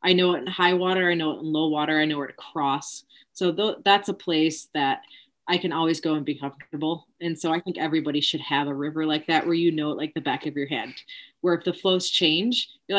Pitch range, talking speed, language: 155-195 Hz, 260 wpm, English